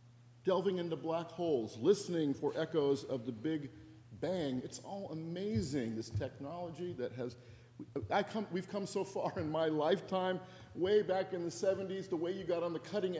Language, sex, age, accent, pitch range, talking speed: English, male, 50-69, American, 120-175 Hz, 175 wpm